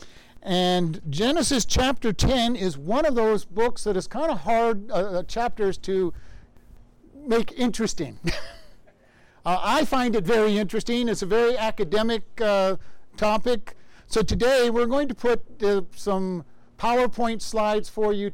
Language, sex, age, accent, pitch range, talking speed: English, male, 60-79, American, 185-225 Hz, 140 wpm